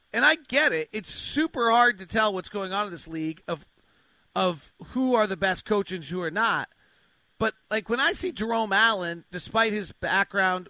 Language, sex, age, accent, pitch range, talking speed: English, male, 40-59, American, 180-230 Hz, 195 wpm